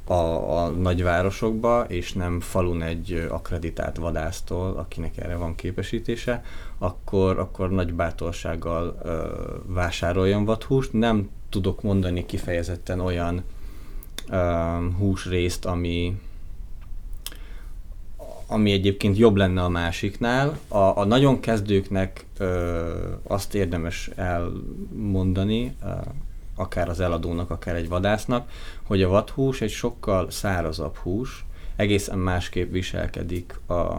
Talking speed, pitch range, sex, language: 100 wpm, 85-100 Hz, male, Hungarian